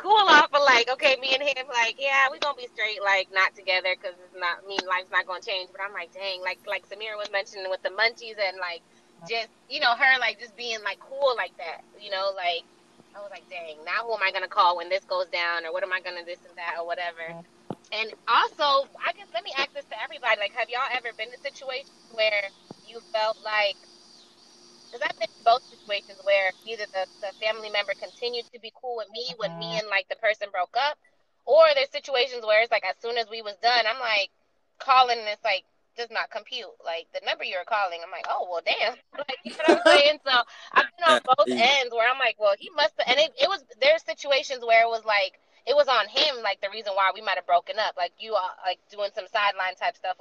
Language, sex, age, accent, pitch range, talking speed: English, female, 20-39, American, 195-280 Hz, 250 wpm